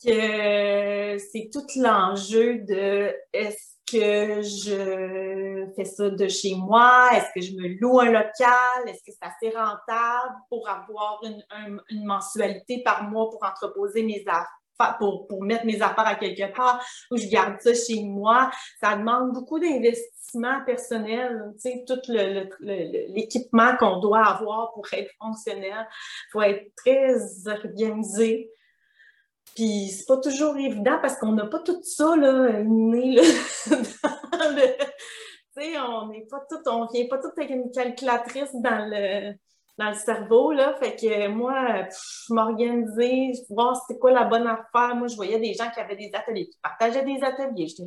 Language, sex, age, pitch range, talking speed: French, female, 30-49, 210-250 Hz, 165 wpm